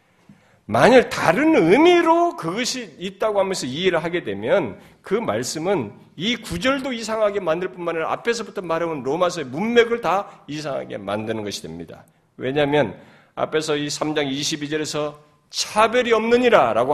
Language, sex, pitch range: Korean, male, 170-270 Hz